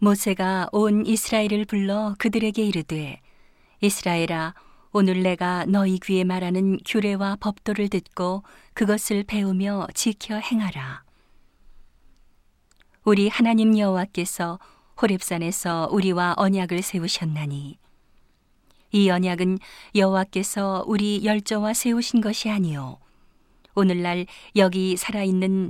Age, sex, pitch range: 40-59, female, 175-210 Hz